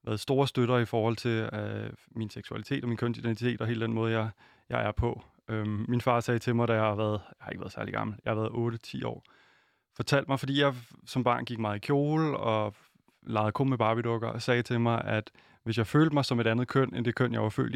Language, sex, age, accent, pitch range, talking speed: Danish, male, 20-39, native, 110-125 Hz, 255 wpm